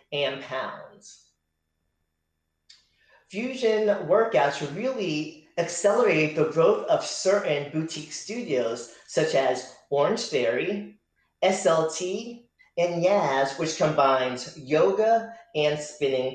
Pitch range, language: 135-205 Hz, English